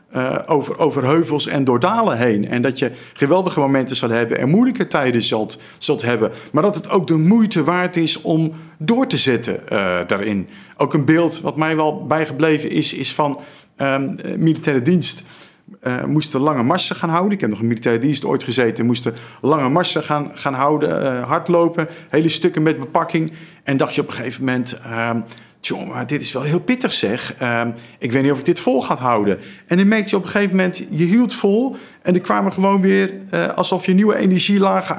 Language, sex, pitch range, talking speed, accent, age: Dutch, male, 140-185 Hz, 205 wpm, Dutch, 50-69